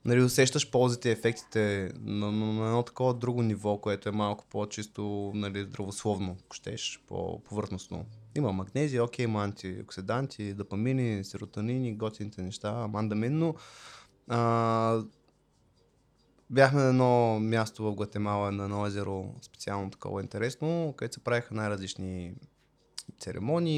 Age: 20-39